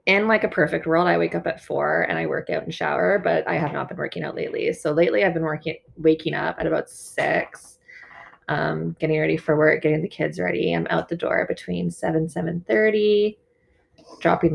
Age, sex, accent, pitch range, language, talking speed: 20-39, female, American, 160-195 Hz, English, 215 wpm